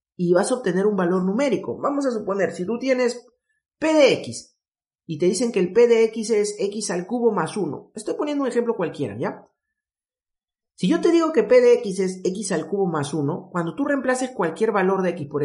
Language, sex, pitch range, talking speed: Spanish, male, 170-260 Hz, 225 wpm